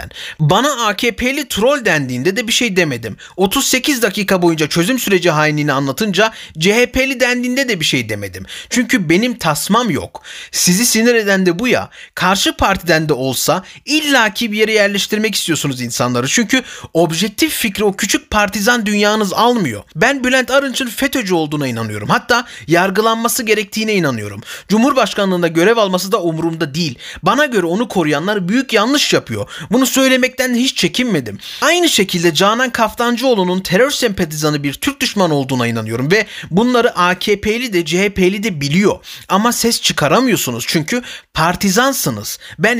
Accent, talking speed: native, 140 wpm